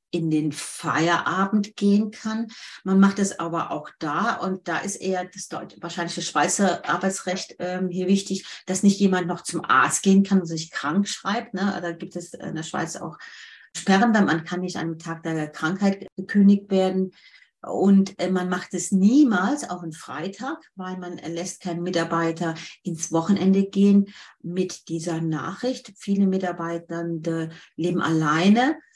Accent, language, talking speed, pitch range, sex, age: German, German, 165 wpm, 165-195 Hz, female, 40-59